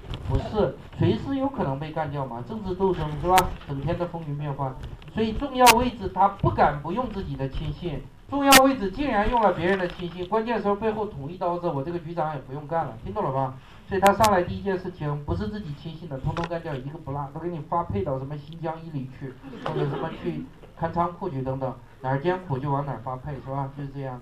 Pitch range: 130-180 Hz